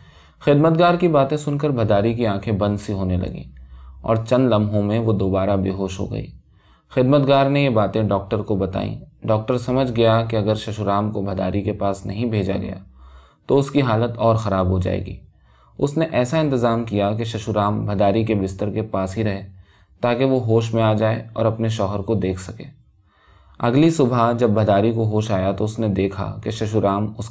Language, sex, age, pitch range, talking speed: Urdu, male, 20-39, 95-120 Hz, 200 wpm